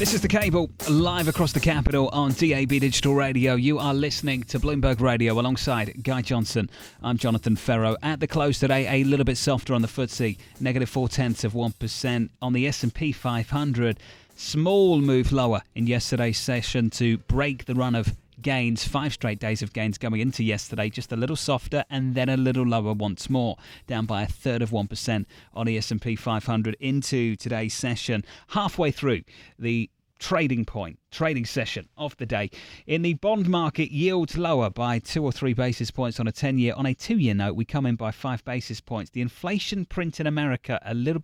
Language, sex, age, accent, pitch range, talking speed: English, male, 30-49, British, 110-140 Hz, 195 wpm